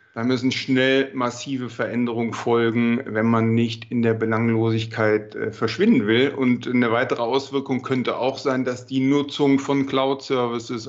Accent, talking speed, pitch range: German, 145 wpm, 115-135 Hz